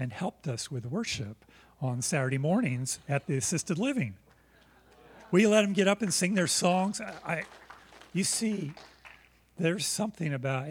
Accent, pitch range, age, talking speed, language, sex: American, 125-180 Hz, 40-59, 155 wpm, English, male